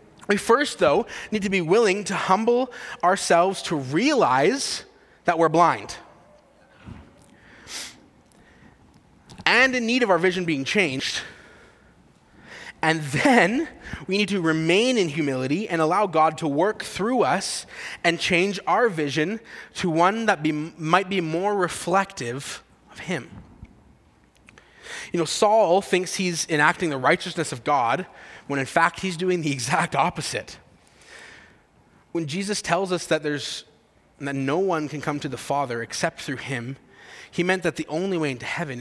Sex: male